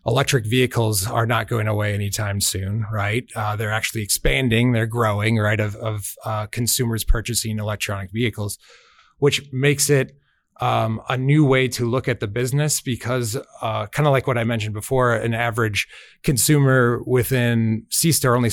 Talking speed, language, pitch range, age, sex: 160 wpm, English, 110-125 Hz, 30-49, male